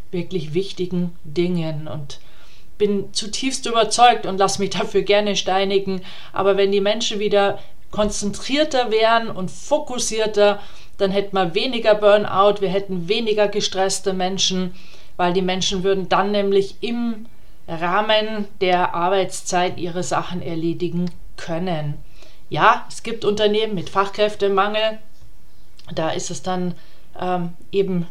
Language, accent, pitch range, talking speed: German, German, 175-205 Hz, 125 wpm